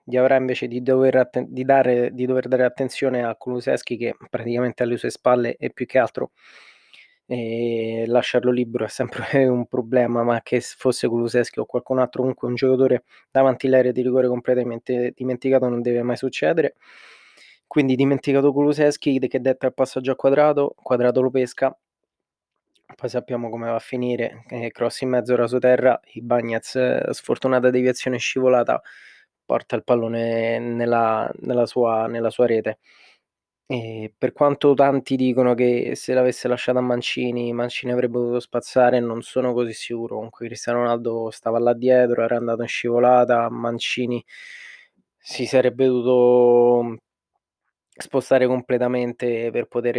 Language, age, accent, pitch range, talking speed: Italian, 20-39, native, 120-130 Hz, 150 wpm